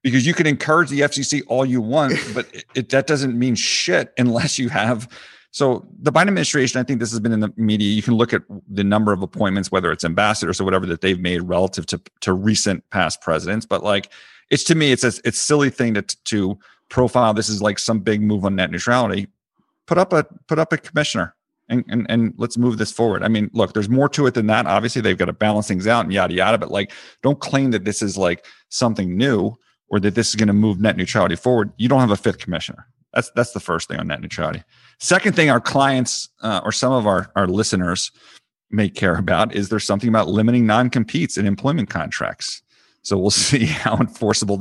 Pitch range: 100-130 Hz